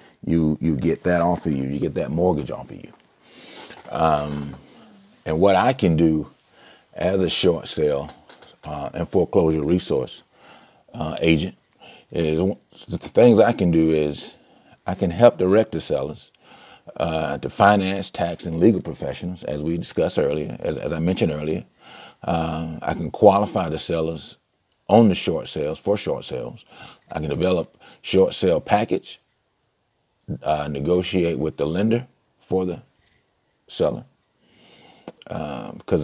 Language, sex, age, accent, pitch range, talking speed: English, male, 40-59, American, 80-90 Hz, 145 wpm